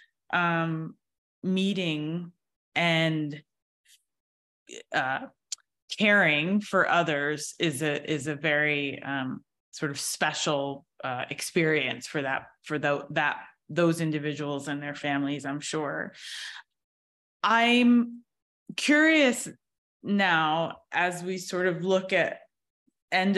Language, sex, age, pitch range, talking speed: English, female, 20-39, 155-220 Hz, 105 wpm